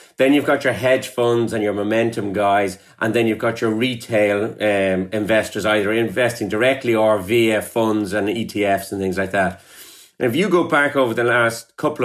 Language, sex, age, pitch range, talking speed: English, male, 30-49, 105-125 Hz, 195 wpm